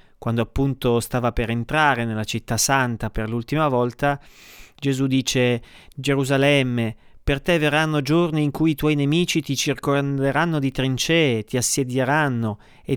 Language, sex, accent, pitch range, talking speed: Italian, male, native, 115-155 Hz, 140 wpm